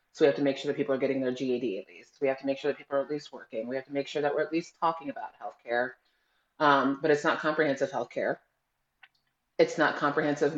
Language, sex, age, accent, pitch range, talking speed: English, female, 30-49, American, 135-150 Hz, 260 wpm